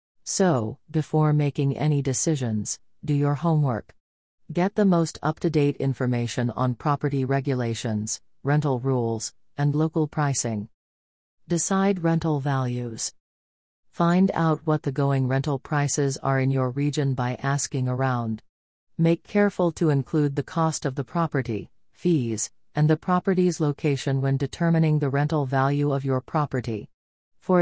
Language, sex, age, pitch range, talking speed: English, female, 40-59, 125-160 Hz, 135 wpm